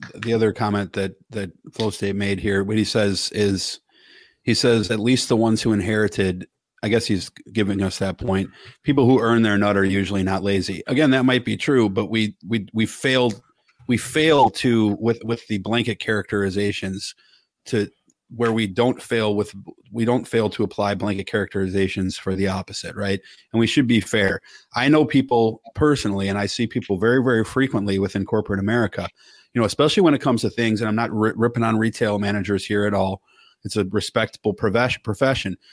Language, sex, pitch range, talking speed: English, male, 100-120 Hz, 190 wpm